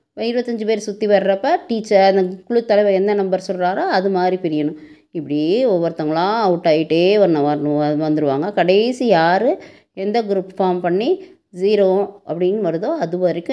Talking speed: 140 wpm